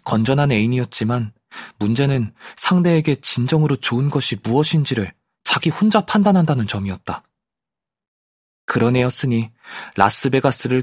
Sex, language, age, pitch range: male, Korean, 20-39, 110-165 Hz